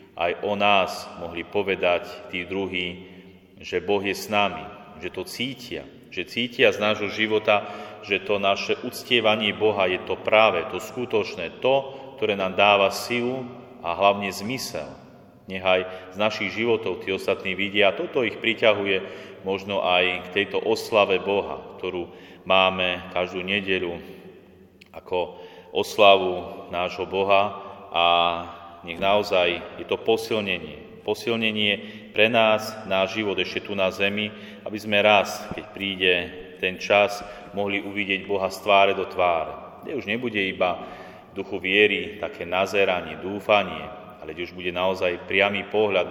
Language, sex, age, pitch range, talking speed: Slovak, male, 30-49, 95-105 Hz, 140 wpm